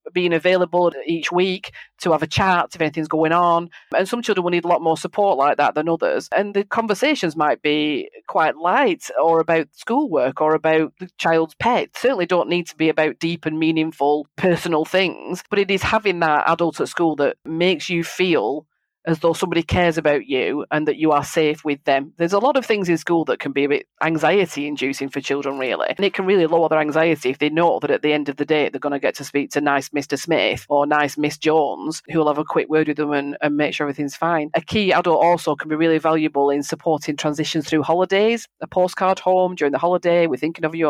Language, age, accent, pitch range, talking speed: English, 40-59, British, 150-175 Hz, 235 wpm